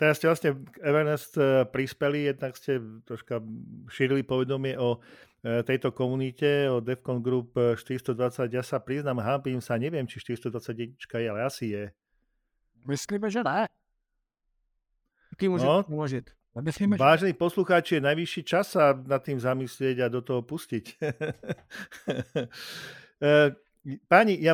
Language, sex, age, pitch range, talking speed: Slovak, male, 50-69, 120-145 Hz, 110 wpm